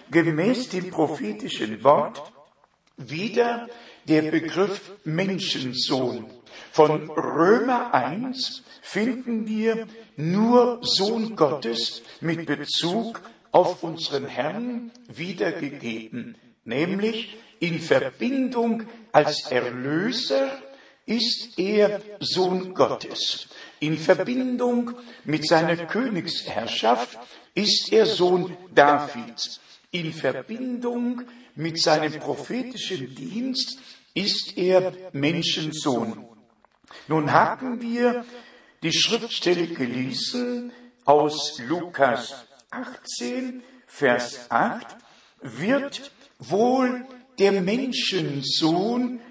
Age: 60-79